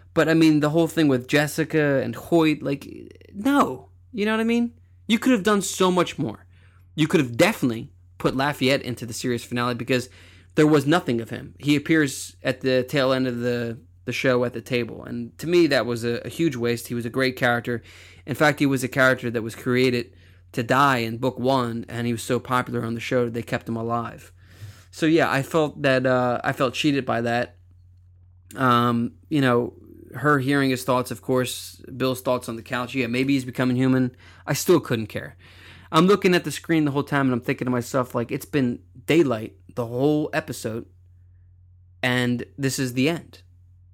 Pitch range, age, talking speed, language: 115-145 Hz, 20-39, 205 wpm, English